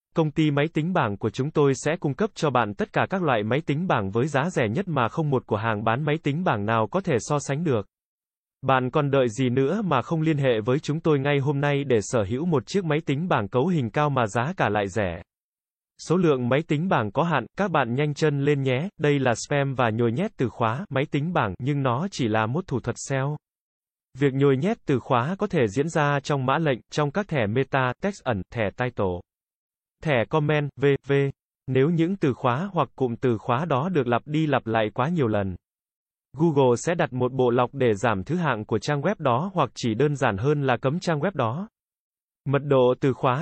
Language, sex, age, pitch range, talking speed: Vietnamese, male, 20-39, 125-155 Hz, 235 wpm